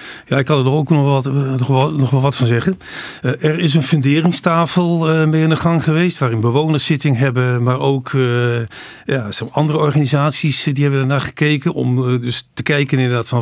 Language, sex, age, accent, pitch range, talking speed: Dutch, male, 40-59, Dutch, 125-155 Hz, 190 wpm